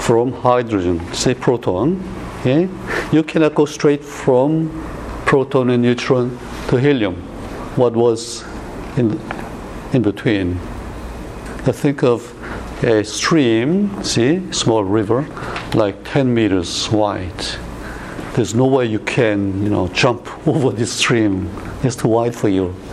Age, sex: 60-79, male